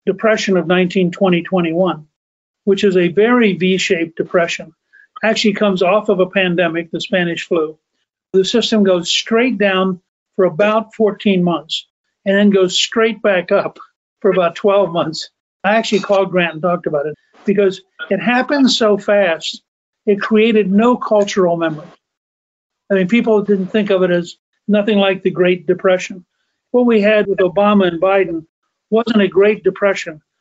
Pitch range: 180-210 Hz